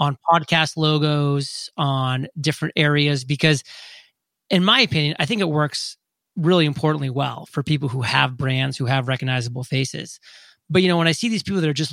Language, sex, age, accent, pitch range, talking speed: English, male, 30-49, American, 140-165 Hz, 185 wpm